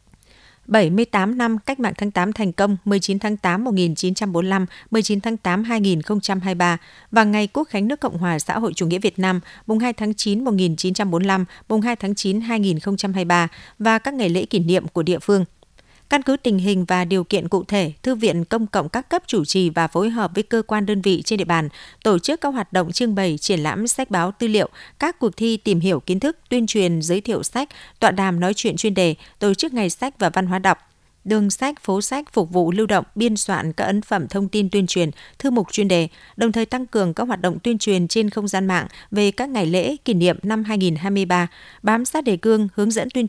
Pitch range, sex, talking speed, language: 180-225 Hz, female, 225 wpm, Vietnamese